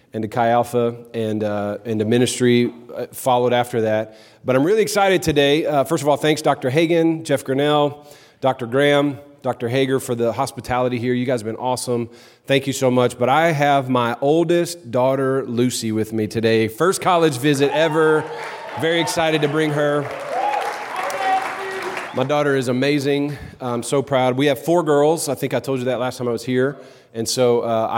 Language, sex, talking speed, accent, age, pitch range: English, male, 185 wpm, American, 40-59, 125-150 Hz